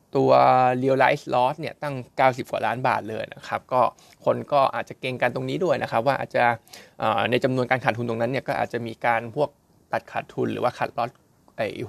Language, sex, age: Thai, male, 20-39